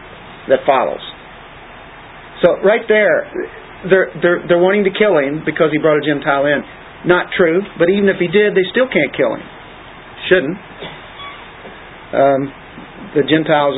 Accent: American